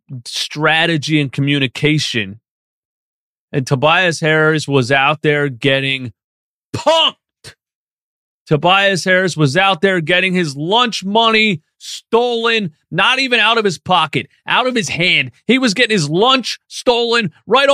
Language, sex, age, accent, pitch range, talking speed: English, male, 30-49, American, 145-220 Hz, 130 wpm